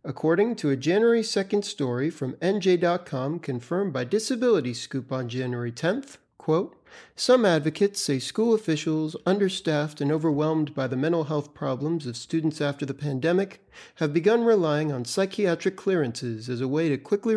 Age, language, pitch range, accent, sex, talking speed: 40-59, English, 145-195 Hz, American, male, 150 wpm